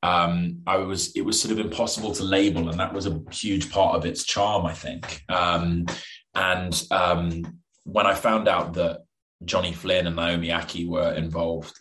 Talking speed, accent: 185 wpm, British